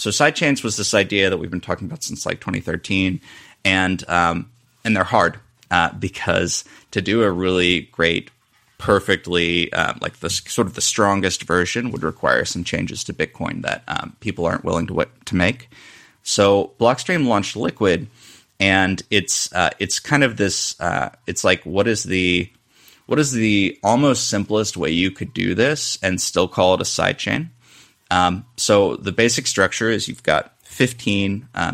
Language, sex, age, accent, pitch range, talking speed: English, male, 30-49, American, 90-120 Hz, 170 wpm